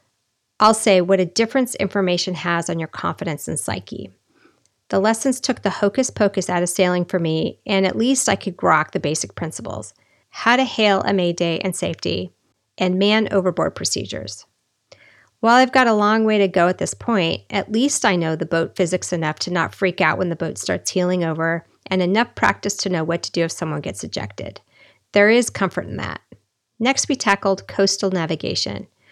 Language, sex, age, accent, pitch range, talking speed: English, female, 40-59, American, 170-205 Hz, 190 wpm